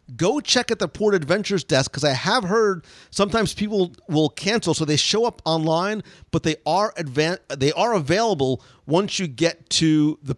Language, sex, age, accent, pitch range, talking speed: English, male, 40-59, American, 145-175 Hz, 185 wpm